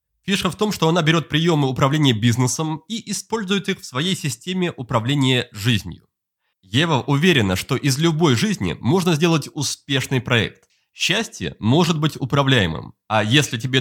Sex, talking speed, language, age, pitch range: male, 150 wpm, Russian, 30-49, 120-170 Hz